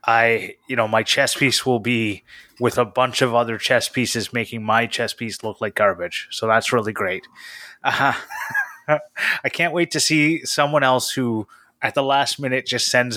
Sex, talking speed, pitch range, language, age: male, 185 wpm, 110-130 Hz, English, 20-39